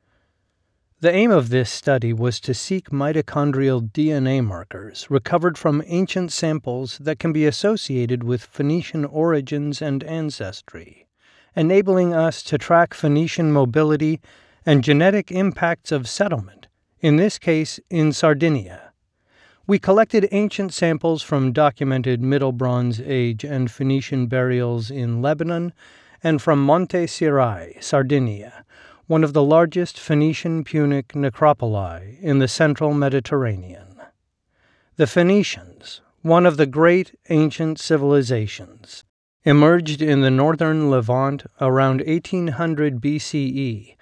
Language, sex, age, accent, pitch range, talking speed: English, male, 40-59, American, 125-160 Hz, 115 wpm